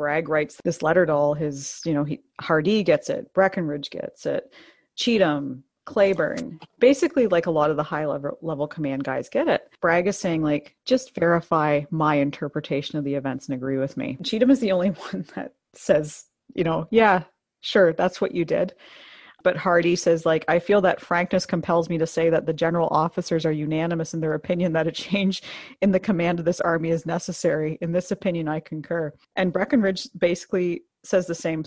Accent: American